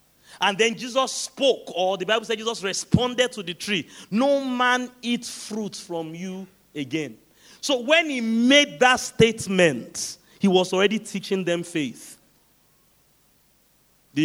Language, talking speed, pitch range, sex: English, 140 wpm, 165-220 Hz, male